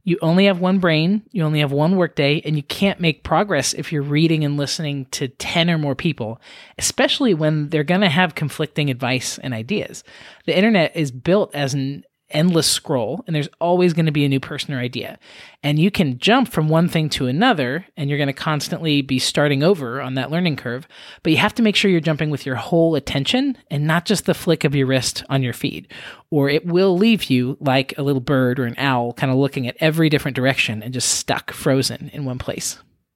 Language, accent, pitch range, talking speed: English, American, 135-170 Hz, 225 wpm